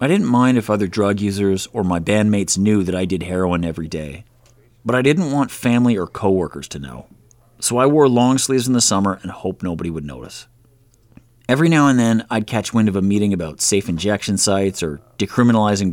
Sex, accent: male, American